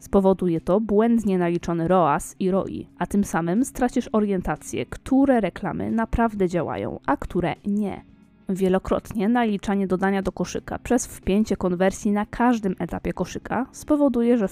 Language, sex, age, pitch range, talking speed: Polish, female, 20-39, 185-230 Hz, 135 wpm